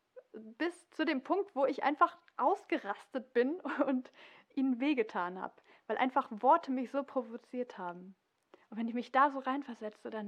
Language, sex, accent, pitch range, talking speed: German, female, German, 215-260 Hz, 165 wpm